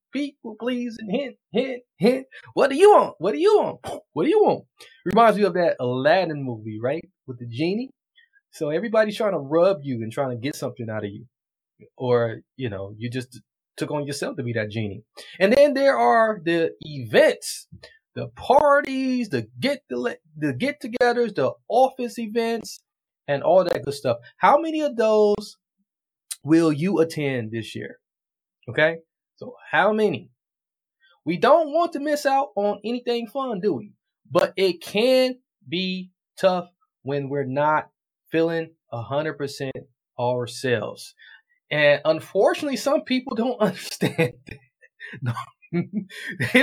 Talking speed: 155 wpm